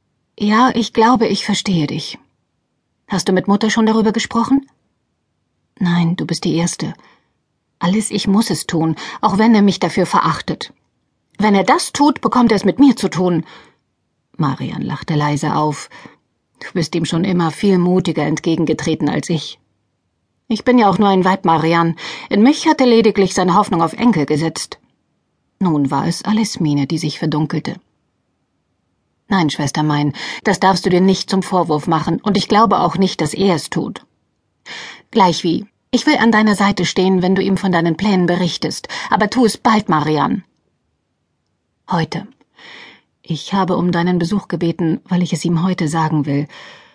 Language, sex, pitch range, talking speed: German, female, 160-210 Hz, 170 wpm